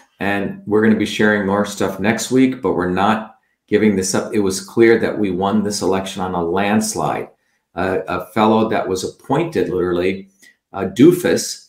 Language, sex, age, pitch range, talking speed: English, male, 50-69, 95-115 Hz, 185 wpm